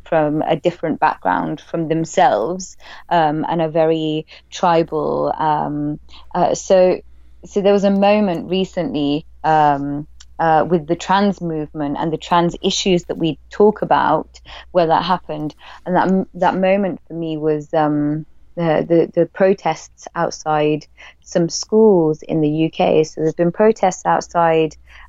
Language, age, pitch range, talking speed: English, 20-39, 155-190 Hz, 145 wpm